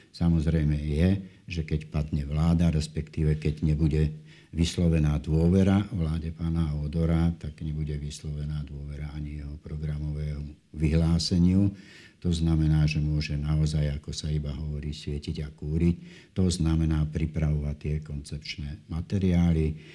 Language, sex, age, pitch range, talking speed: Slovak, male, 60-79, 75-85 Hz, 120 wpm